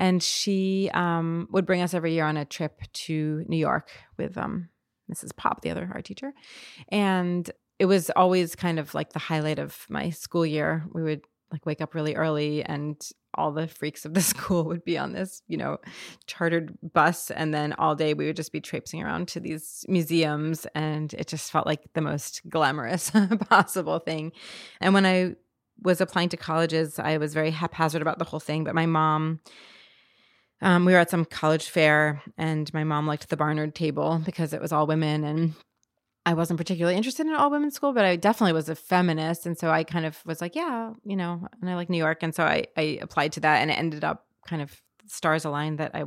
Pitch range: 155-175 Hz